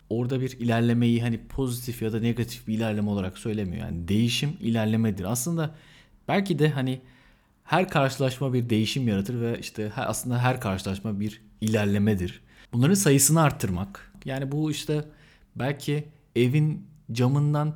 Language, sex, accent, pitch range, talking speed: Turkish, male, native, 110-145 Hz, 140 wpm